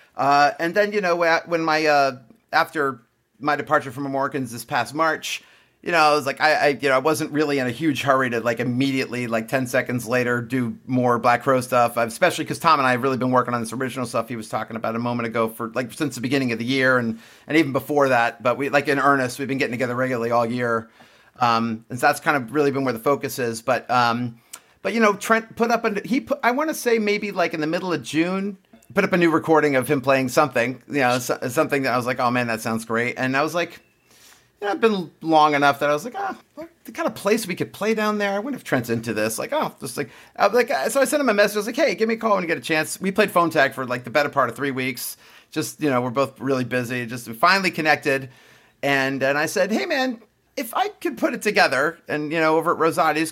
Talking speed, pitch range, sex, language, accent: 265 wpm, 125-170 Hz, male, English, American